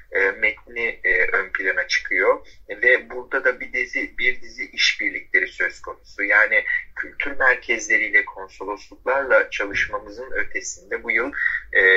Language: Turkish